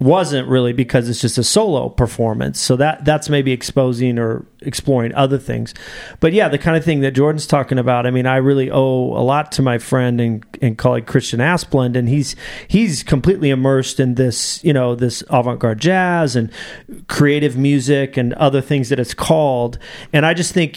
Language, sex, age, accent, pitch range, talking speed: English, male, 30-49, American, 125-145 Hz, 195 wpm